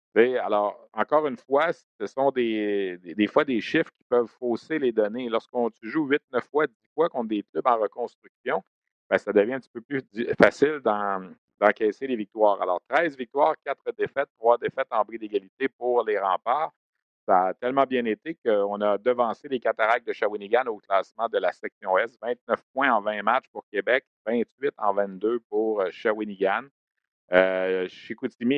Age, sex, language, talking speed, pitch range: 50-69, male, French, 180 wpm, 105-145 Hz